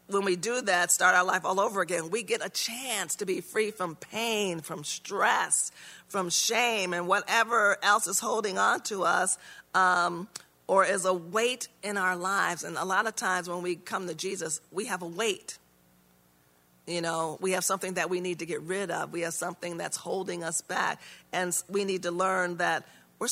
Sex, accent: female, American